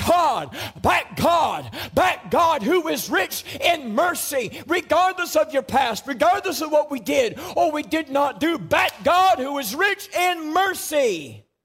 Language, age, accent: English, 50-69, American